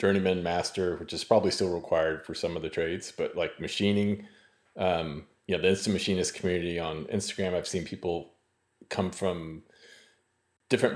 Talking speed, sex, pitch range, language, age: 165 wpm, male, 85-100 Hz, English, 30-49